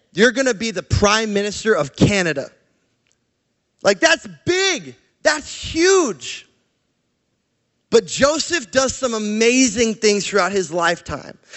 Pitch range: 205-265 Hz